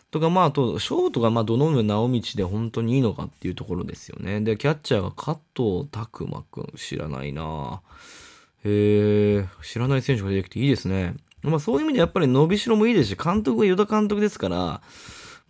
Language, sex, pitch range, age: Japanese, male, 100-155 Hz, 20-39